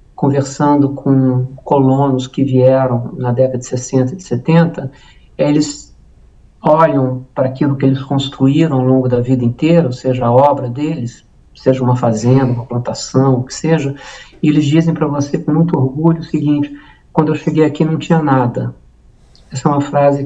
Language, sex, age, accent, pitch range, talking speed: Portuguese, male, 50-69, Brazilian, 125-145 Hz, 170 wpm